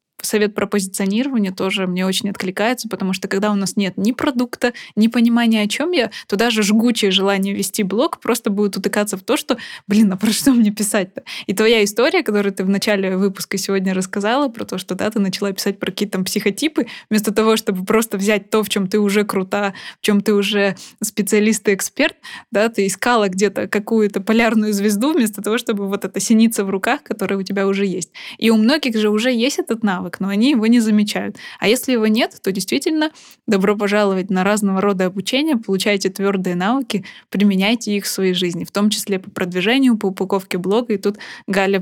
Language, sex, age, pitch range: Russian, female, 20-39, 195-230 Hz